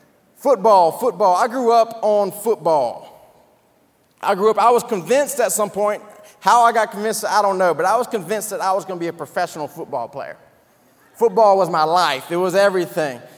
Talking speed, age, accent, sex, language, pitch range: 195 wpm, 30-49, American, male, English, 180-225 Hz